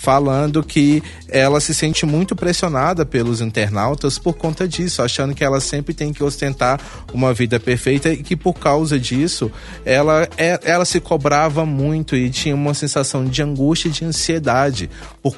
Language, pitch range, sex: Portuguese, 115-150 Hz, male